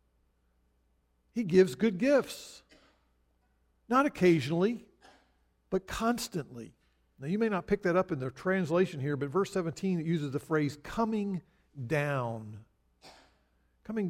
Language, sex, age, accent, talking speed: English, male, 50-69, American, 125 wpm